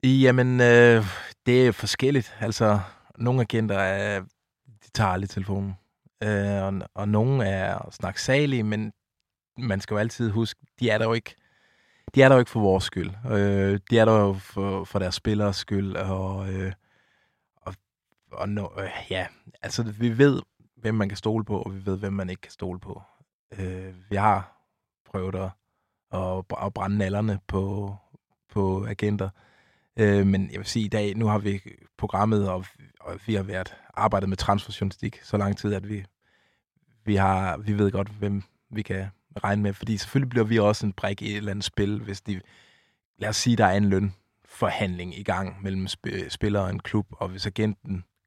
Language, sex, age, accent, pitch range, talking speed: Danish, male, 20-39, native, 95-110 Hz, 180 wpm